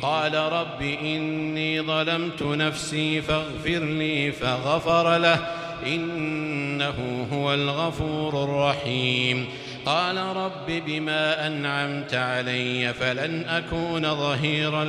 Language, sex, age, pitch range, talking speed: Arabic, male, 50-69, 140-180 Hz, 85 wpm